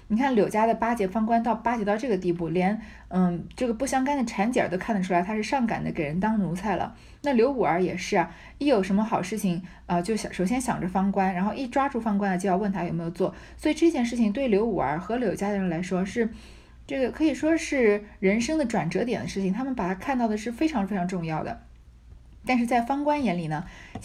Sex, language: female, Chinese